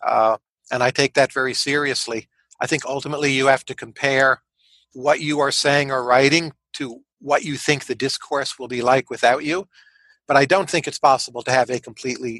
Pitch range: 130-165 Hz